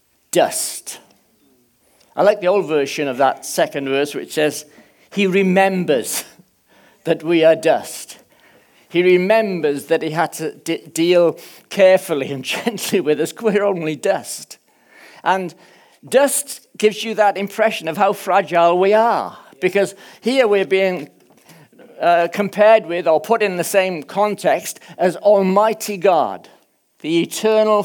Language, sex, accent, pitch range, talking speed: English, male, British, 170-215 Hz, 135 wpm